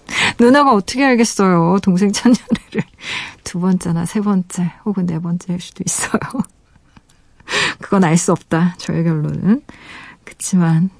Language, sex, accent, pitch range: Korean, female, native, 170-215 Hz